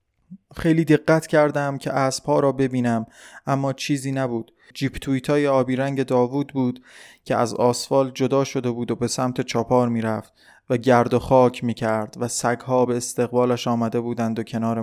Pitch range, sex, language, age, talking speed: 120-130 Hz, male, Persian, 20-39, 160 wpm